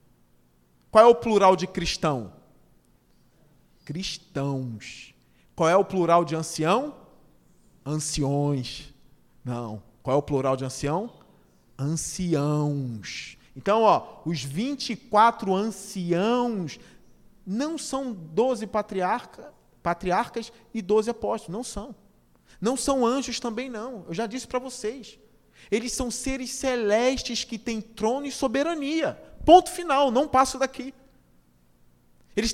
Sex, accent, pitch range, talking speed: male, Brazilian, 170-275 Hz, 115 wpm